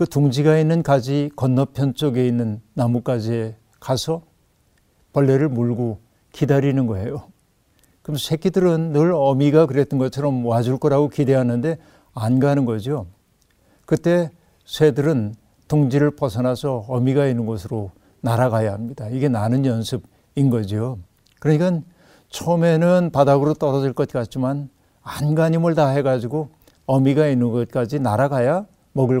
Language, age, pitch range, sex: Korean, 60-79, 115-150 Hz, male